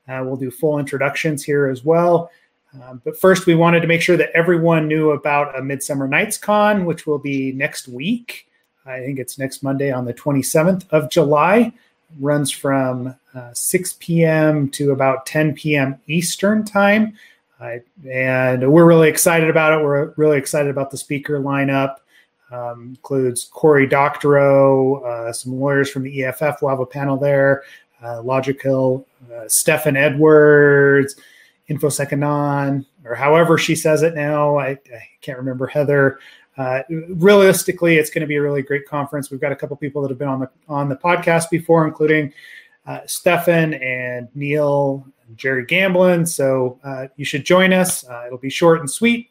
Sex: male